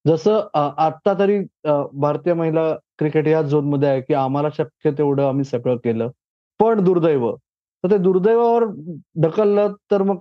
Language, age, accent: Marathi, 30-49, native